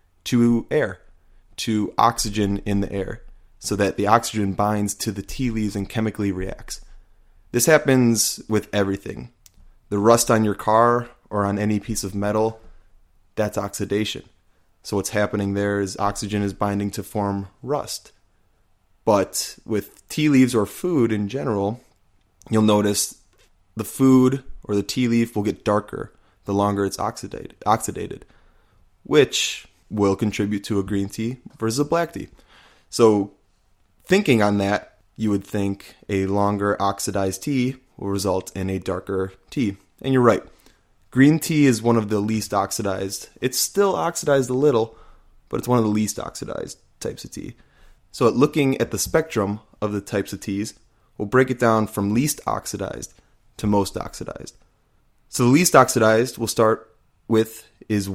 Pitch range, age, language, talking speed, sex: 100-115 Hz, 20-39, English, 155 wpm, male